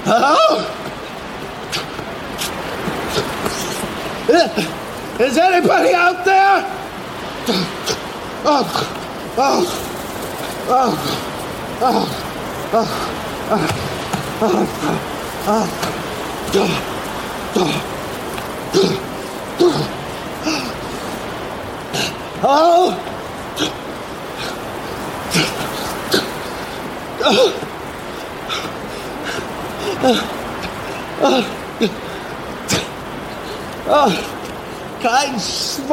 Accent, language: American, German